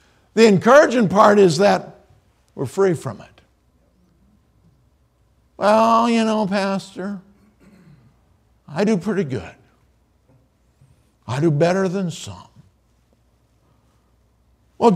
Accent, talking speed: American, 90 wpm